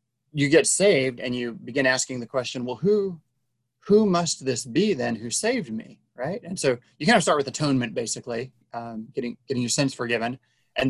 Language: English